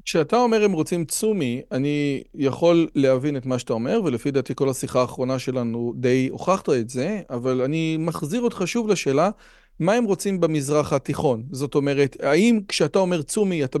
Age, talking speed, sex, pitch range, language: 40-59, 175 wpm, male, 145-195 Hz, Hebrew